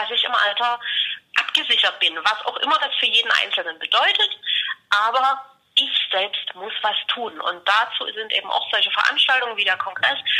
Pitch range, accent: 220-270 Hz, German